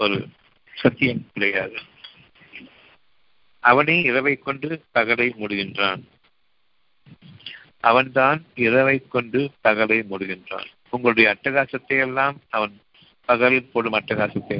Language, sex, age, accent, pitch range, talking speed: Tamil, male, 50-69, native, 110-130 Hz, 65 wpm